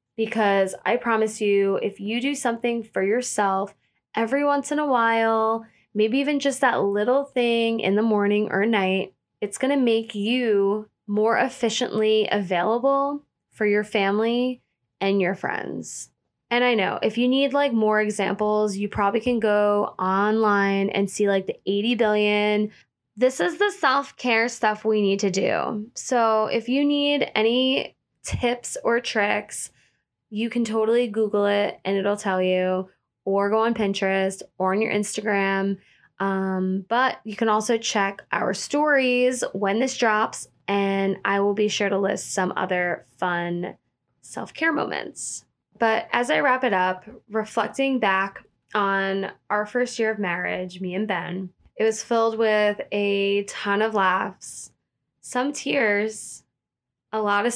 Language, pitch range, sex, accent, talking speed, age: English, 200-235 Hz, female, American, 155 wpm, 10-29